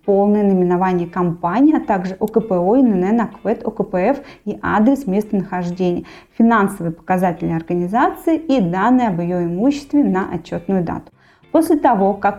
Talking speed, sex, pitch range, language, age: 125 wpm, female, 185-250 Hz, Russian, 20-39